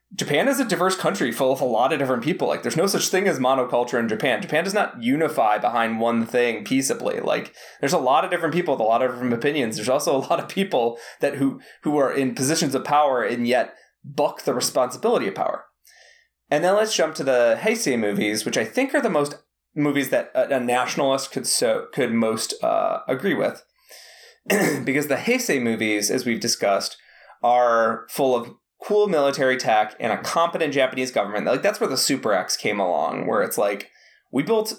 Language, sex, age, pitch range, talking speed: English, male, 20-39, 120-195 Hz, 205 wpm